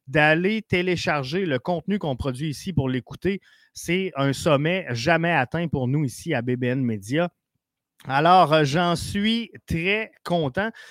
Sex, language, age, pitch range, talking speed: male, French, 30-49, 135-180 Hz, 140 wpm